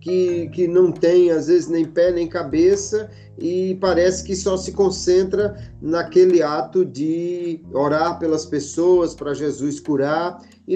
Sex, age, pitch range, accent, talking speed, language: male, 40-59, 150-190 Hz, Brazilian, 145 wpm, Portuguese